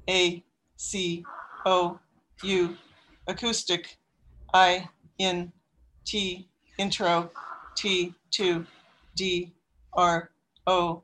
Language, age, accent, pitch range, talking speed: English, 60-79, American, 165-185 Hz, 75 wpm